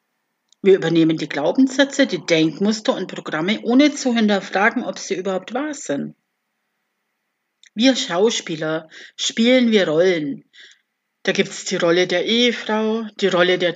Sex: female